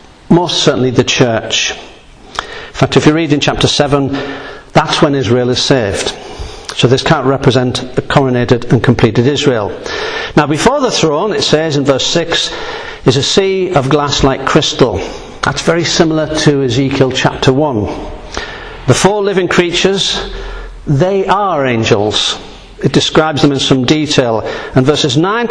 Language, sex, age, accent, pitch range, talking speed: English, male, 50-69, British, 140-175 Hz, 155 wpm